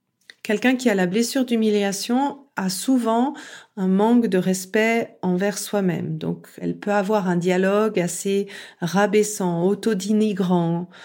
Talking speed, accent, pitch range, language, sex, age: 125 wpm, French, 190-235 Hz, French, female, 40-59